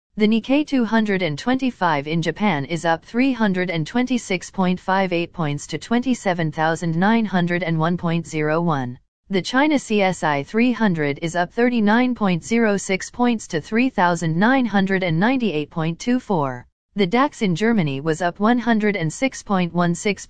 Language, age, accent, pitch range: English, 40-59, American, 165-225 Hz